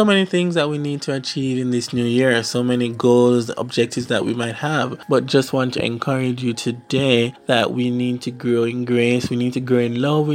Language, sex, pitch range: English, male, 120-160 Hz